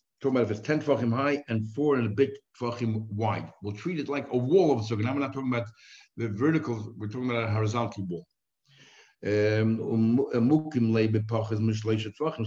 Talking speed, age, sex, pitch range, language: 165 wpm, 60-79, male, 110-130 Hz, English